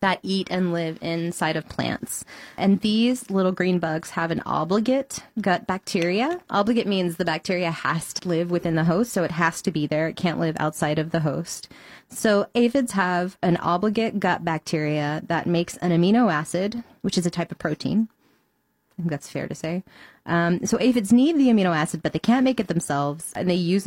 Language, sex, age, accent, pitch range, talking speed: English, female, 20-39, American, 160-195 Hz, 195 wpm